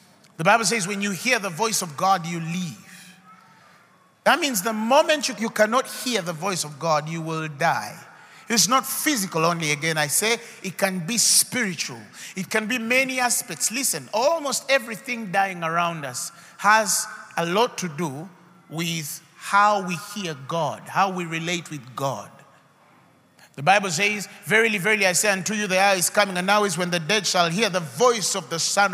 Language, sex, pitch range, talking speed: English, male, 170-230 Hz, 185 wpm